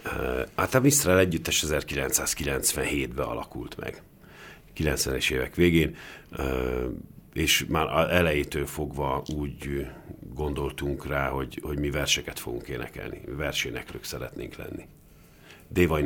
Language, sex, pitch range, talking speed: Hungarian, male, 70-80 Hz, 100 wpm